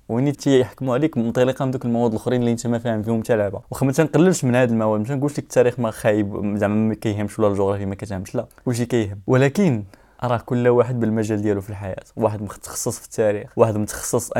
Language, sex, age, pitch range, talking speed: Arabic, male, 20-39, 110-125 Hz, 220 wpm